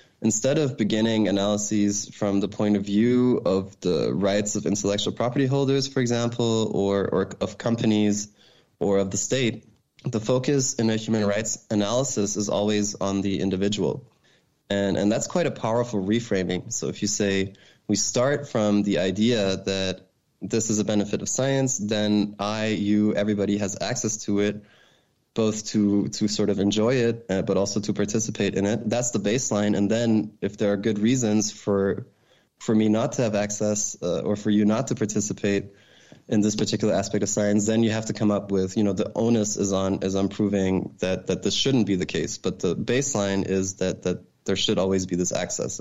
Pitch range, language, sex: 100-110 Hz, English, male